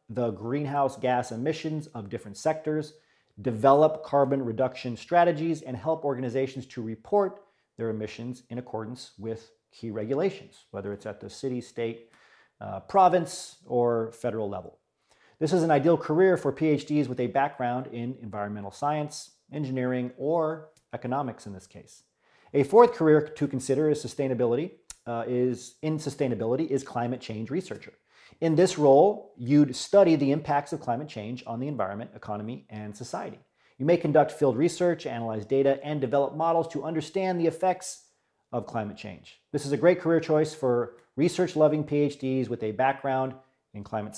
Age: 40-59